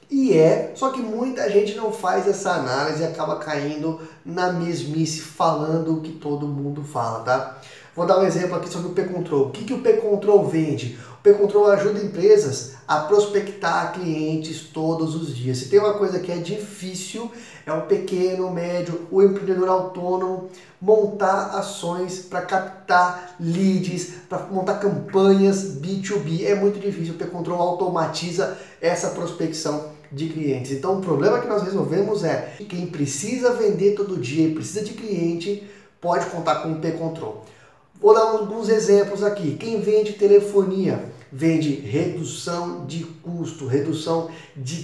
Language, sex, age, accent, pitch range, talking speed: Portuguese, male, 20-39, Brazilian, 160-195 Hz, 155 wpm